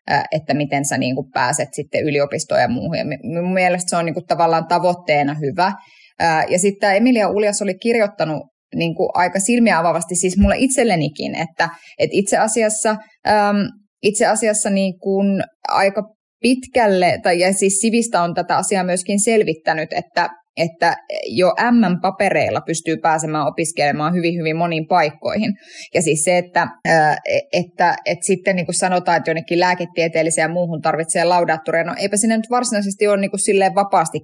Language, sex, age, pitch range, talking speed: Finnish, female, 20-39, 160-200 Hz, 145 wpm